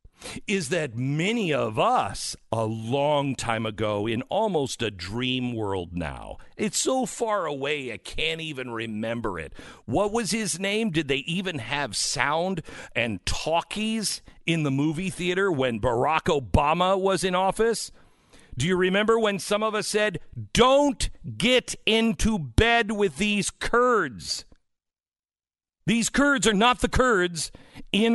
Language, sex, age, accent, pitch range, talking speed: English, male, 50-69, American, 135-225 Hz, 145 wpm